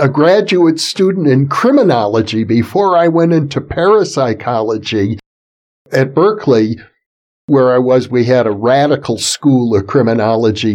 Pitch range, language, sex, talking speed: 130-185 Hz, English, male, 125 wpm